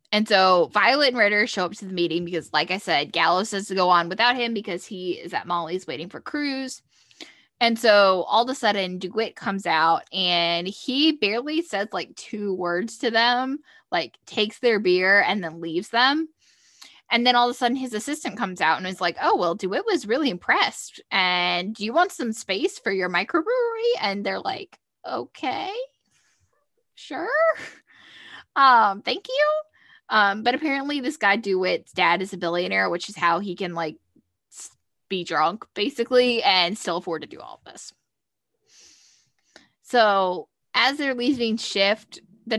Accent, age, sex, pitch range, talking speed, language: American, 10-29, female, 180-245 Hz, 175 wpm, English